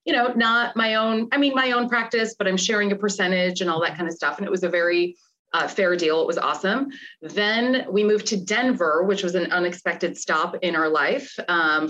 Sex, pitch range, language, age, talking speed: female, 170-235 Hz, English, 30-49, 230 wpm